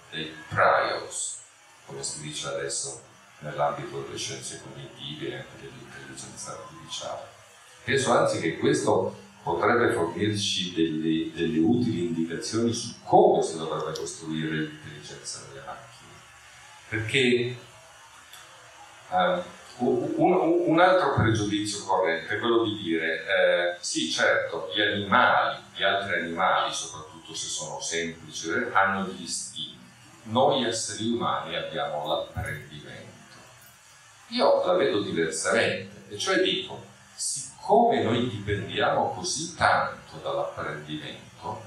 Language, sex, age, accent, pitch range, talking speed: Italian, male, 40-59, native, 80-115 Hz, 110 wpm